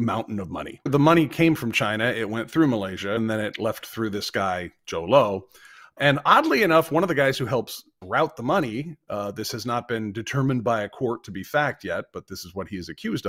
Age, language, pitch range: 40-59, English, 110-150 Hz